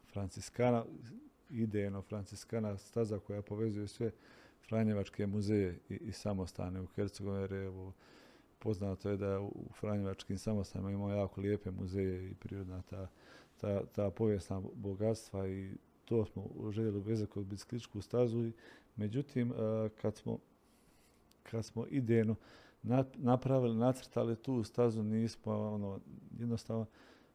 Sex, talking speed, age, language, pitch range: male, 125 wpm, 40-59, Croatian, 100-115 Hz